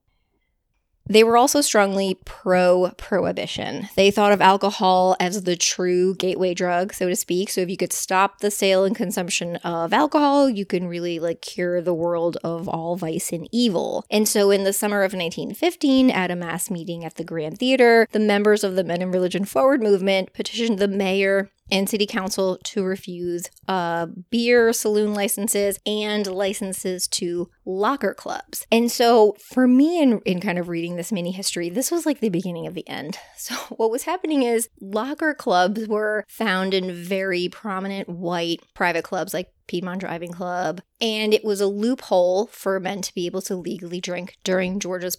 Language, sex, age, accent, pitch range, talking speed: English, female, 20-39, American, 180-220 Hz, 180 wpm